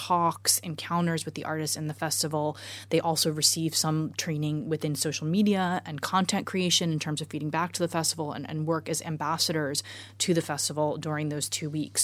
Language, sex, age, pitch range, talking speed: English, female, 20-39, 150-165 Hz, 195 wpm